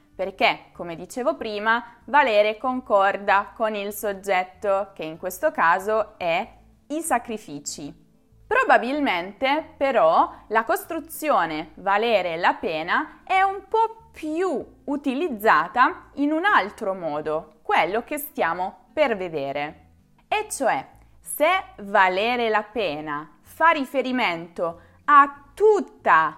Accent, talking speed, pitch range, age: native, 105 wpm, 175-290 Hz, 20-39